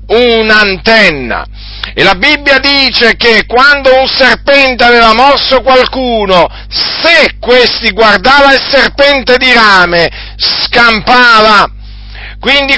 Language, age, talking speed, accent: Italian, 50-69, 100 wpm, native